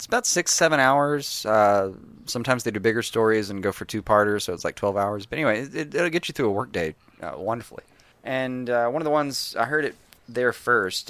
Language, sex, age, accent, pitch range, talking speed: English, male, 30-49, American, 100-120 Hz, 240 wpm